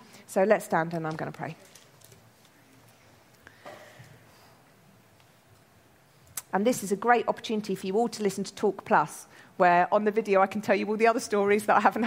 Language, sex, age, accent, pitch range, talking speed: English, female, 40-59, British, 185-245 Hz, 185 wpm